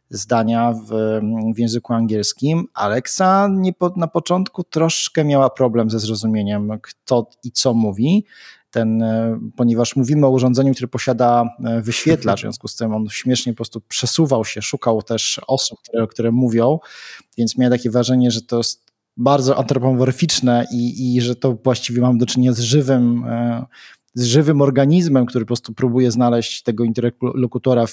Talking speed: 155 wpm